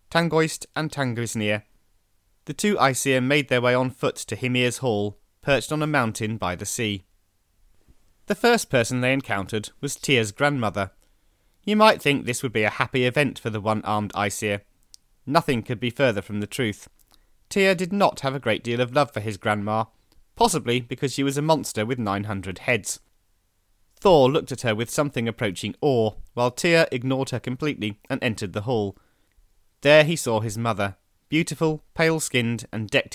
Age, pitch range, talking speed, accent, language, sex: 30-49, 100-135 Hz, 175 wpm, British, English, male